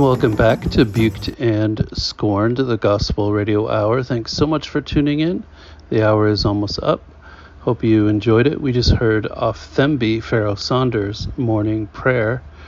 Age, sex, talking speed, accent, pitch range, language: 40-59, male, 160 wpm, American, 105-135 Hz, English